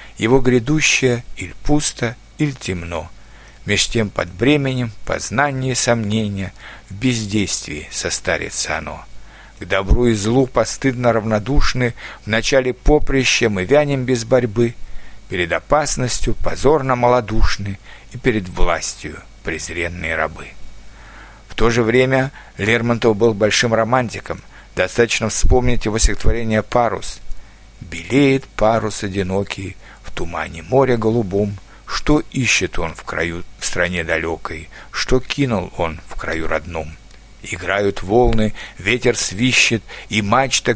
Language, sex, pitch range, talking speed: Russian, male, 95-125 Hz, 115 wpm